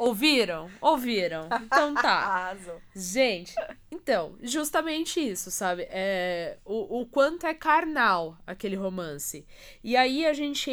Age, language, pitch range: 20-39, Portuguese, 180-235 Hz